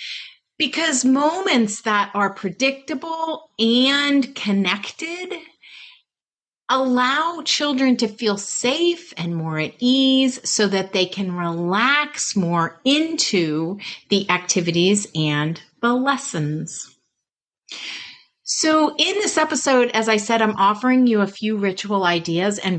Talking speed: 115 wpm